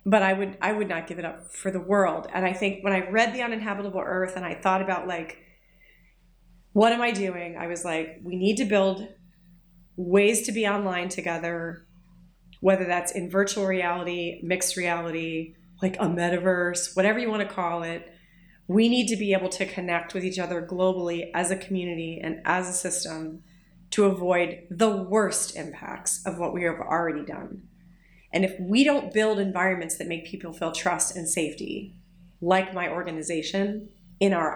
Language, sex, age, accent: English, female, 30-49, American